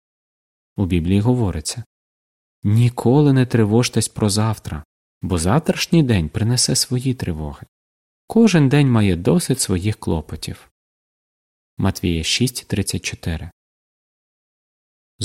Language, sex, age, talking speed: Ukrainian, male, 30-49, 85 wpm